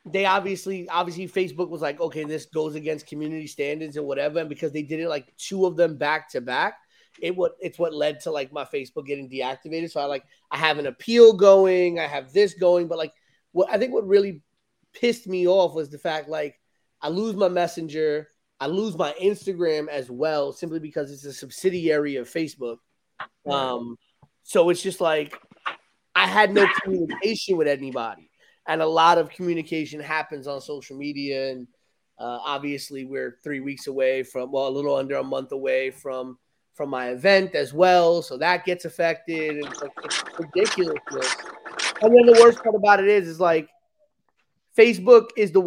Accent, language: American, English